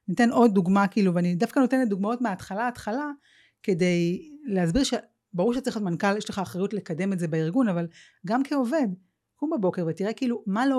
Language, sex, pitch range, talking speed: Hebrew, female, 175-250 Hz, 180 wpm